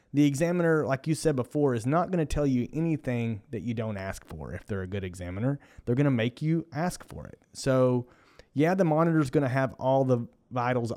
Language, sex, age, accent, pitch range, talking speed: English, male, 30-49, American, 115-150 Hz, 230 wpm